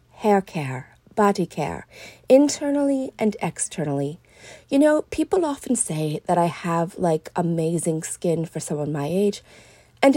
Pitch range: 175-245 Hz